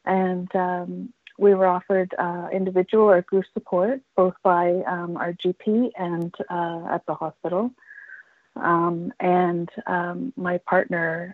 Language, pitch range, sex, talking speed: English, 175-200 Hz, female, 130 wpm